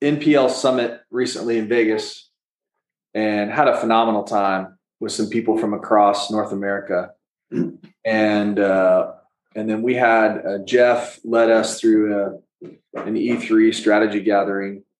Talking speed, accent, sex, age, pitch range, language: 130 wpm, American, male, 20-39, 110-130 Hz, English